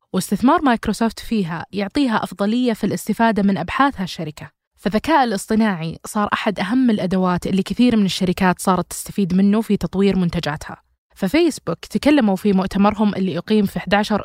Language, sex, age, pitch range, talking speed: Arabic, female, 20-39, 185-220 Hz, 145 wpm